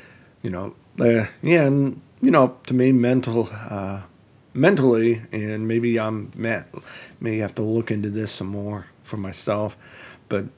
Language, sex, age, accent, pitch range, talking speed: English, male, 40-59, American, 105-125 Hz, 145 wpm